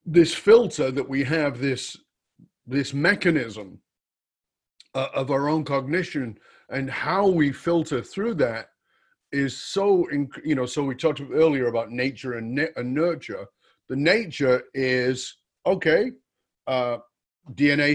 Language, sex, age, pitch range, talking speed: English, male, 40-59, 135-170 Hz, 135 wpm